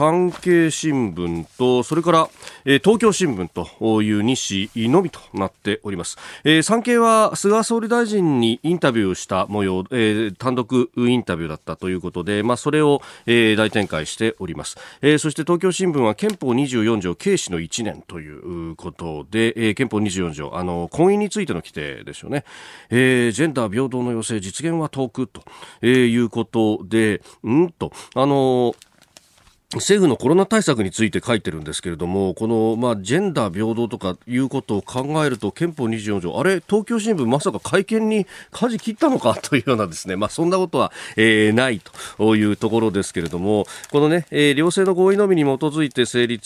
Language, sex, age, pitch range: Japanese, male, 40-59, 100-160 Hz